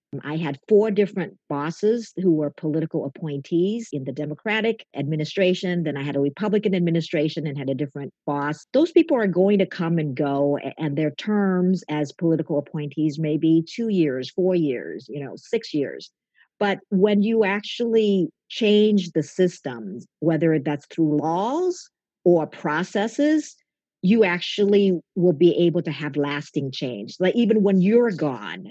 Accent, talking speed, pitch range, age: American, 155 wpm, 150-200 Hz, 50-69